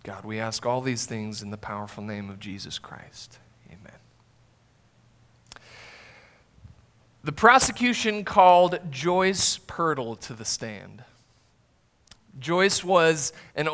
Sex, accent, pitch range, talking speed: male, American, 125-175 Hz, 110 wpm